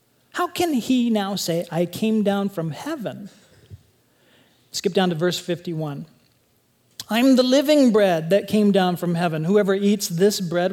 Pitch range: 170-220 Hz